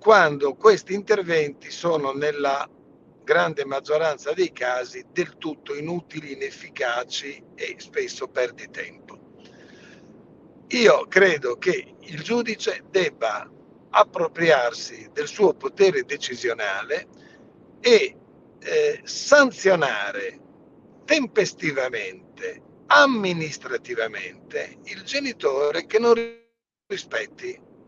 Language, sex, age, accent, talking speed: Italian, male, 60-79, native, 80 wpm